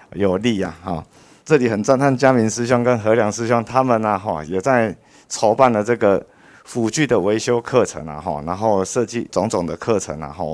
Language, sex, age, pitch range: Chinese, male, 50-69, 90-120 Hz